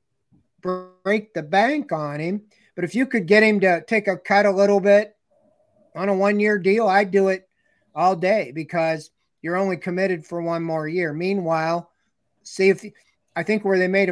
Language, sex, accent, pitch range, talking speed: English, male, American, 160-195 Hz, 185 wpm